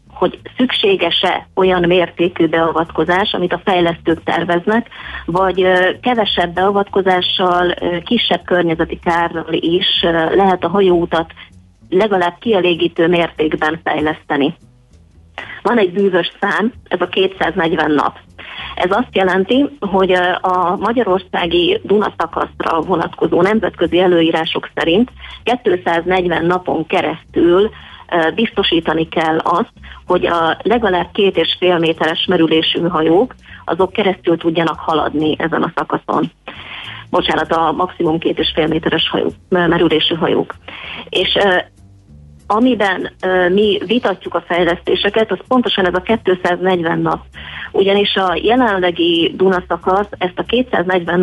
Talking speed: 110 wpm